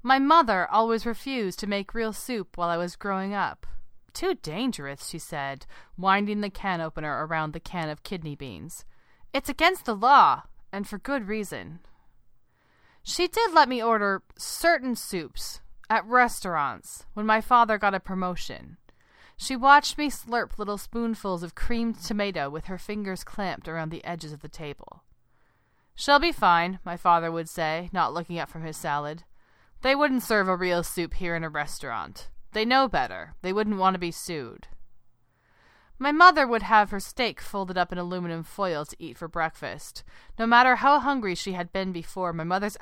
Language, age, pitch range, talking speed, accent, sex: English, 30-49, 170-235 Hz, 175 wpm, American, female